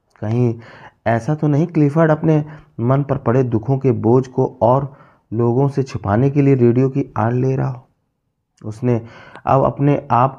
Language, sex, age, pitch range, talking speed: Hindi, male, 30-49, 105-130 Hz, 170 wpm